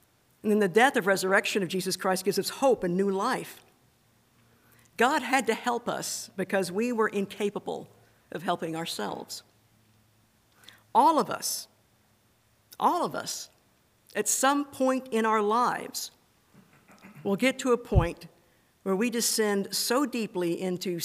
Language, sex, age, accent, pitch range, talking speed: English, female, 50-69, American, 180-225 Hz, 145 wpm